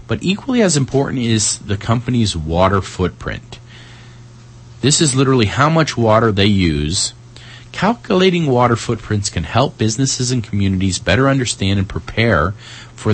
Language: English